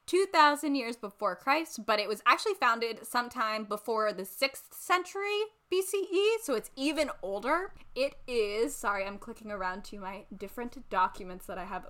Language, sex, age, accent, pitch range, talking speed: English, female, 10-29, American, 210-290 Hz, 160 wpm